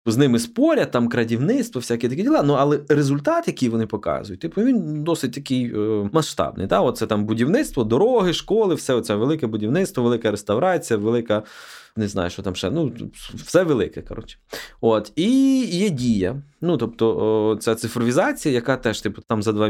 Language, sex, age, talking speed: Ukrainian, male, 20-39, 175 wpm